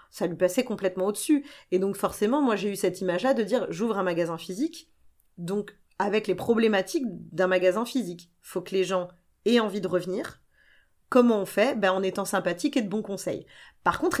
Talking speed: 210 wpm